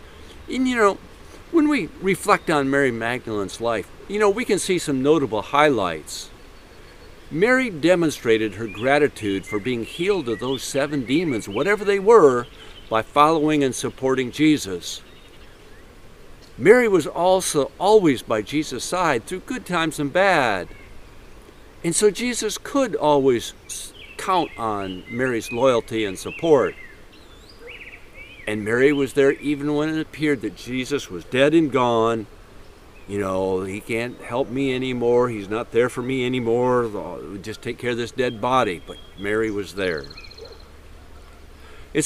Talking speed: 140 wpm